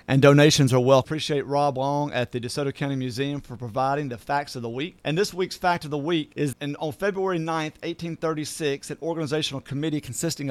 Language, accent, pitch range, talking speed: English, American, 140-175 Hz, 205 wpm